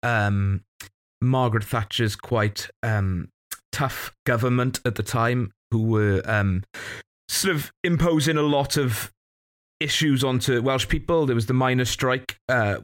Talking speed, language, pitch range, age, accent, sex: 135 wpm, English, 105-130 Hz, 30-49, British, male